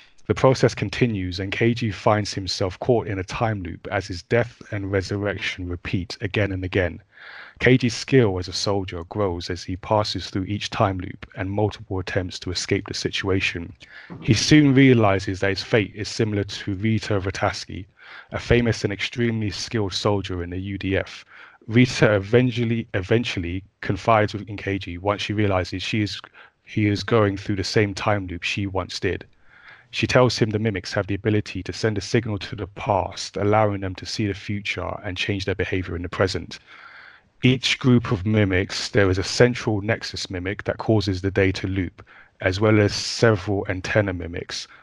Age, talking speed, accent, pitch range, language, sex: 20-39, 175 wpm, British, 95-110 Hz, English, male